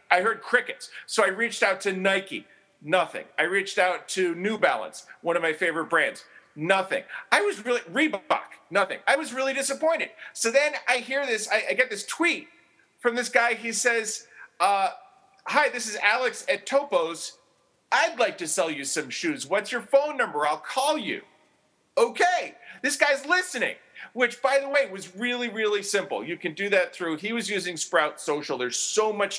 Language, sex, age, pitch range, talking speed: English, male, 40-59, 170-275 Hz, 190 wpm